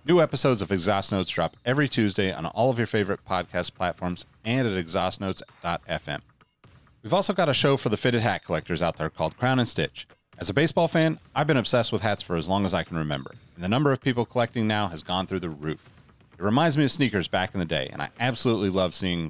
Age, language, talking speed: 30-49, English, 235 wpm